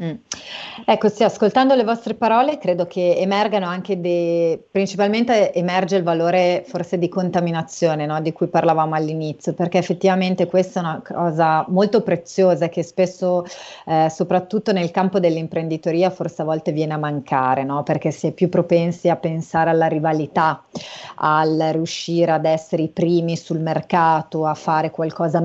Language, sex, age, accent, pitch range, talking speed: Italian, female, 30-49, native, 160-185 Hz, 155 wpm